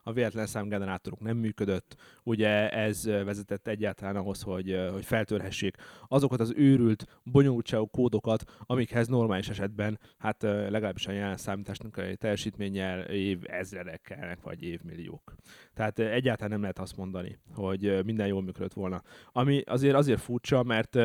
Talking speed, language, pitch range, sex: 135 wpm, Hungarian, 100-125 Hz, male